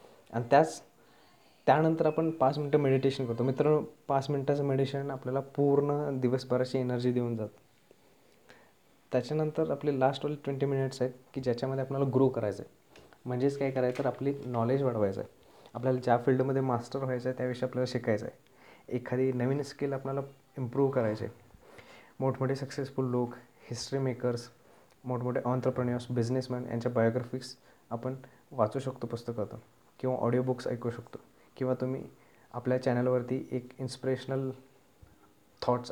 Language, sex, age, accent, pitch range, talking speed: Marathi, male, 20-39, native, 120-135 Hz, 135 wpm